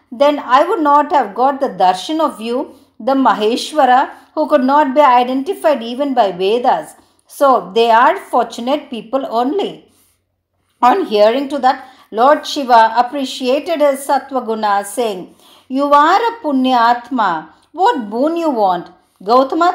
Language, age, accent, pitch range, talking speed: Tamil, 50-69, native, 235-305 Hz, 140 wpm